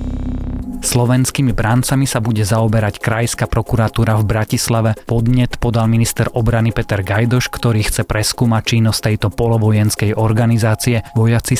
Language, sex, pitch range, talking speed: Slovak, male, 105-120 Hz, 120 wpm